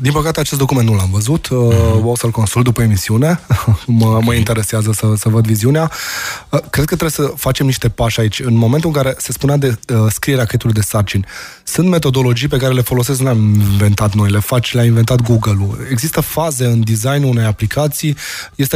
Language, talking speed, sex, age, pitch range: Romanian, 200 wpm, male, 20-39, 120-140 Hz